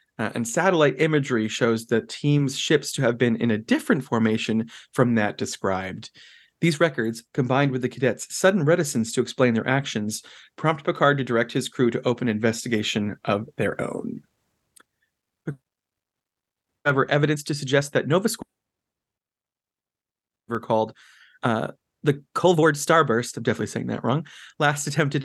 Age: 30-49